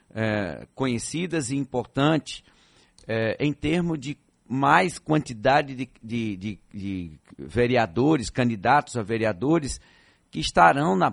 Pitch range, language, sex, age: 120-165 Hz, Portuguese, male, 50-69